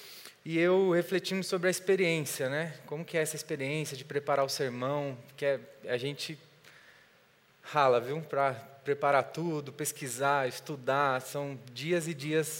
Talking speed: 150 wpm